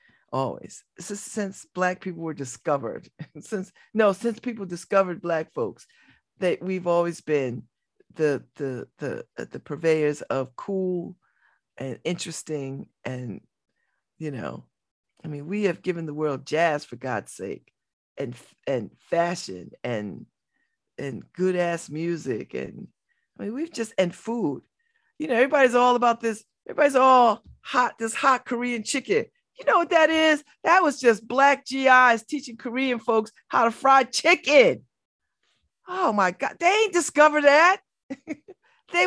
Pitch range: 180-300 Hz